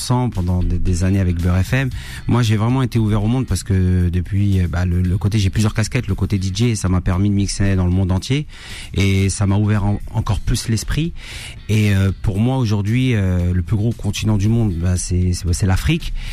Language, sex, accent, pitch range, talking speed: French, male, French, 95-120 Hz, 215 wpm